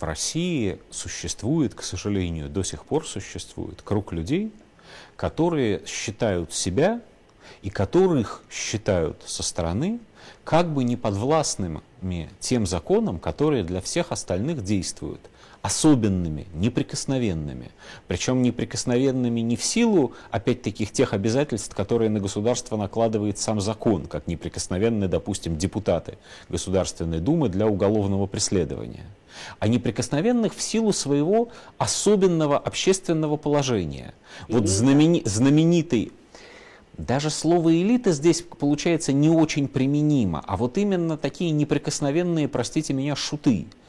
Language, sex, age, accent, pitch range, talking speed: Russian, male, 40-59, native, 110-160 Hz, 110 wpm